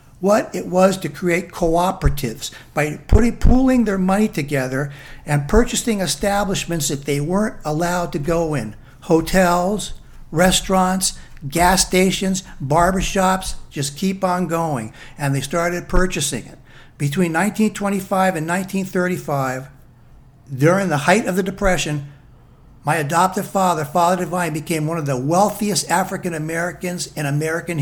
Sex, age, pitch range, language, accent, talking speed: male, 60-79, 145-190 Hz, English, American, 125 wpm